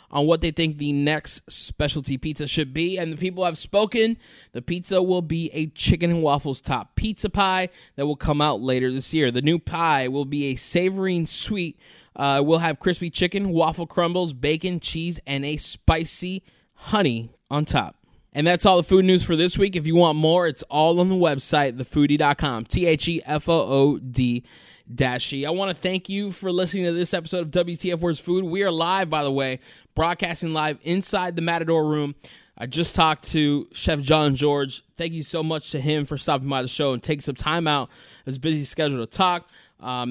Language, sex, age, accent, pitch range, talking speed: English, male, 20-39, American, 140-175 Hz, 210 wpm